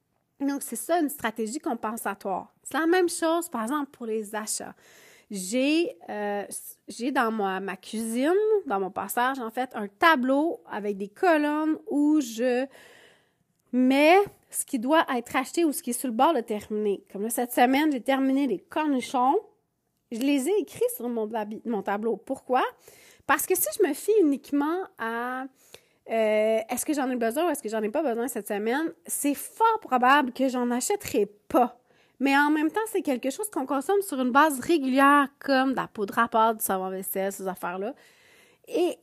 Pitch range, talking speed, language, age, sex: 225-315 Hz, 185 wpm, French, 30-49, female